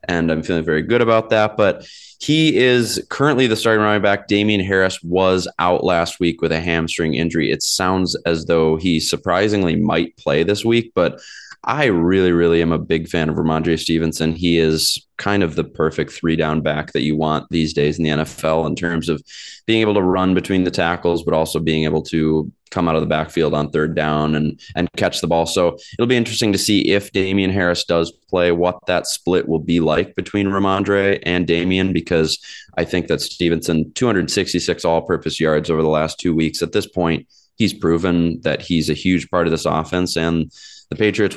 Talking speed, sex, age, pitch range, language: 205 wpm, male, 20-39, 80-95 Hz, English